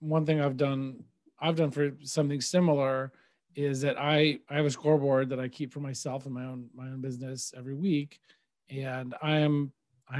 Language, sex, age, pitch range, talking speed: English, male, 40-59, 130-150 Hz, 195 wpm